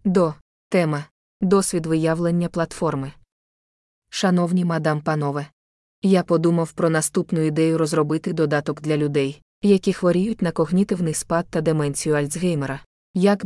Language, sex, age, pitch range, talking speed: Ukrainian, female, 20-39, 155-185 Hz, 115 wpm